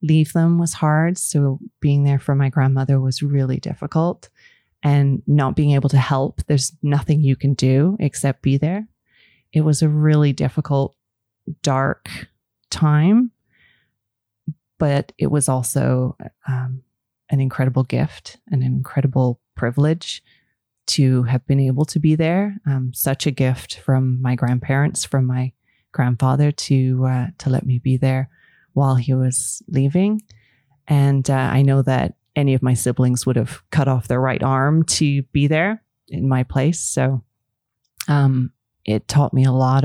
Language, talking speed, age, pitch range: English, 155 wpm, 30-49, 130-145 Hz